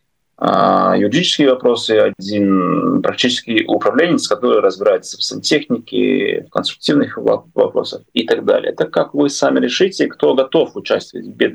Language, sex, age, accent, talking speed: Russian, male, 30-49, native, 125 wpm